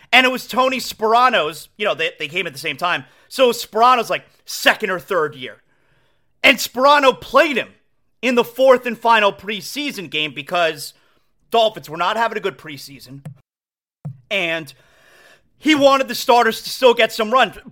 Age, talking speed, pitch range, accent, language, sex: 30-49, 175 wpm, 180-265 Hz, American, English, male